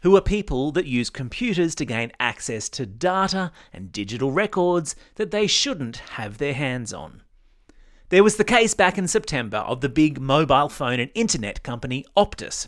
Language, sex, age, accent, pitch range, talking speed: English, male, 30-49, Australian, 130-200 Hz, 175 wpm